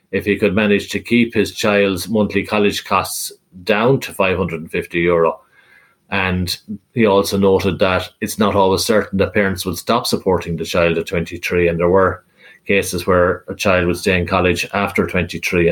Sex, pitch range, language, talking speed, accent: male, 90-105 Hz, English, 175 wpm, Irish